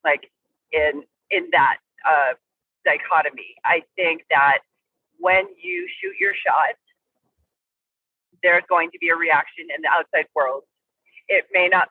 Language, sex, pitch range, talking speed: English, female, 175-275 Hz, 135 wpm